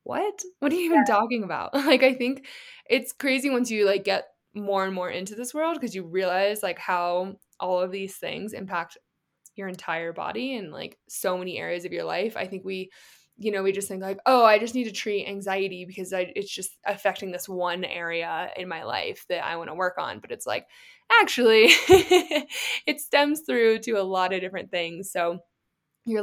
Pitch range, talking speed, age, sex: 180-245 Hz, 210 wpm, 20-39, female